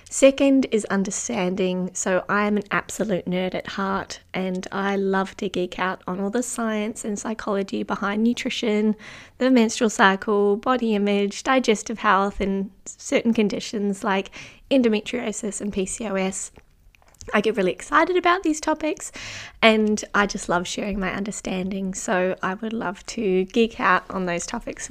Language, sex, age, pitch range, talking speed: English, female, 20-39, 185-235 Hz, 150 wpm